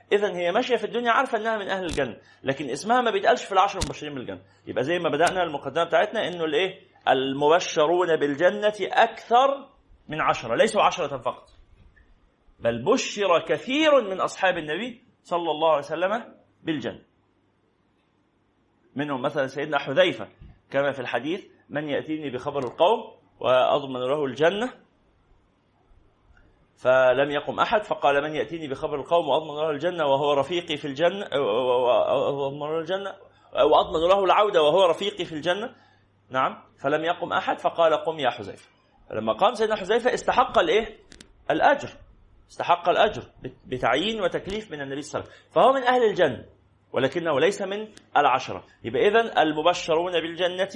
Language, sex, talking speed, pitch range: Arabic, male, 140 wpm, 140-200 Hz